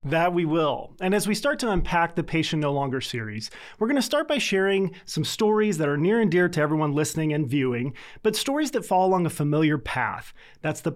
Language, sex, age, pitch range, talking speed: English, male, 30-49, 145-190 Hz, 230 wpm